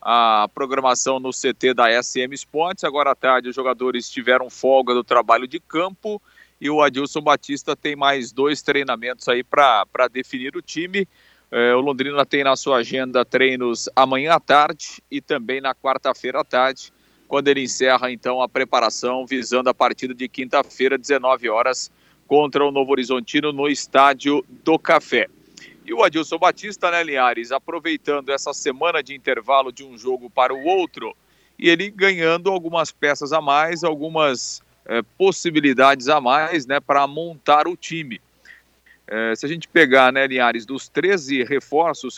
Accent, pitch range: Brazilian, 130-155 Hz